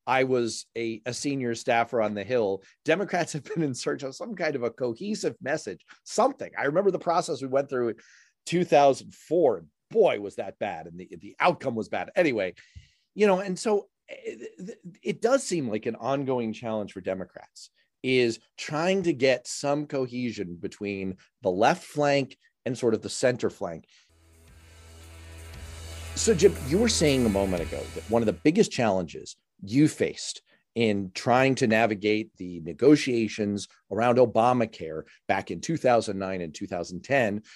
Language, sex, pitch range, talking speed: English, male, 100-145 Hz, 160 wpm